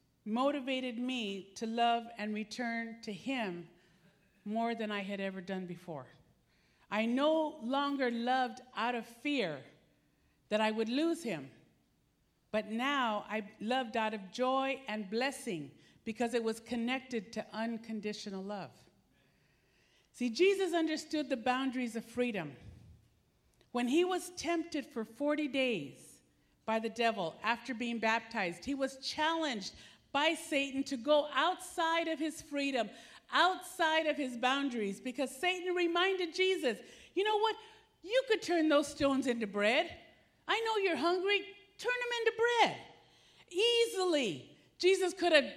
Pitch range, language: 230-350 Hz, English